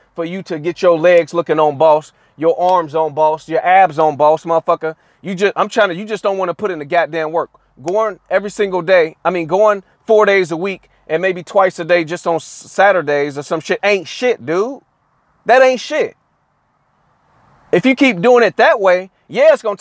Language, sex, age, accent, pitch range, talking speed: English, male, 30-49, American, 160-200 Hz, 215 wpm